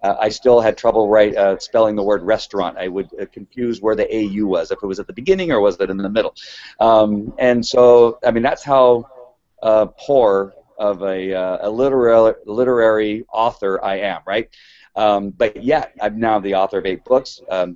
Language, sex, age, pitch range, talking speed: English, male, 40-59, 100-120 Hz, 205 wpm